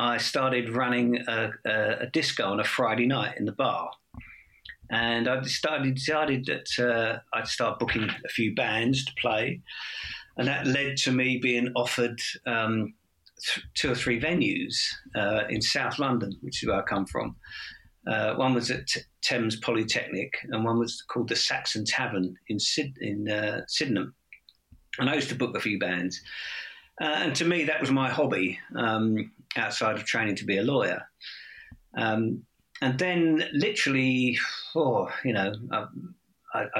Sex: male